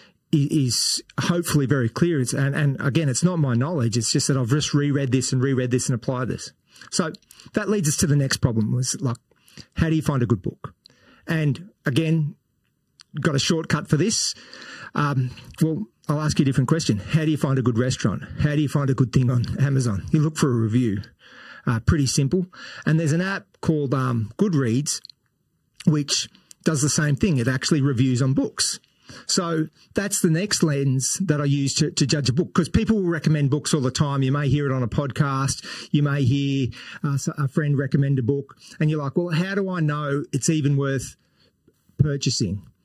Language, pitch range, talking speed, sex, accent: English, 130-160 Hz, 205 wpm, male, Australian